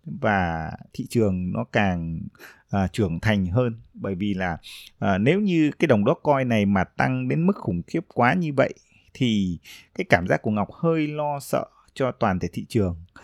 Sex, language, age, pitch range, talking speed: male, Vietnamese, 20-39, 95-130 Hz, 185 wpm